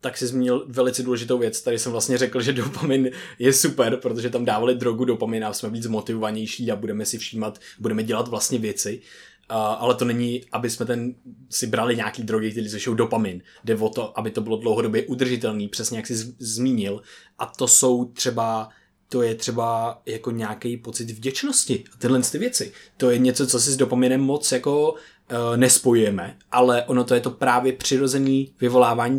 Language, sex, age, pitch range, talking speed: Czech, male, 20-39, 115-130 Hz, 185 wpm